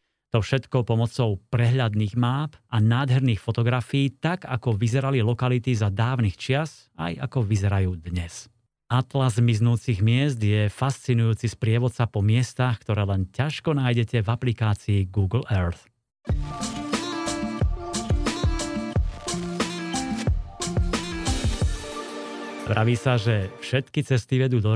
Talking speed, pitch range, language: 100 wpm, 105-130 Hz, Slovak